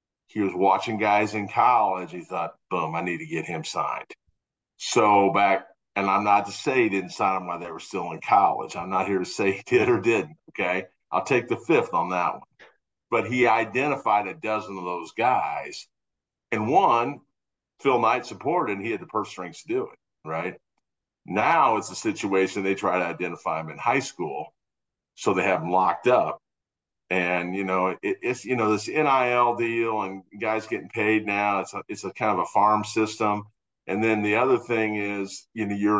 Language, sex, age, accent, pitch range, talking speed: English, male, 50-69, American, 95-115 Hz, 205 wpm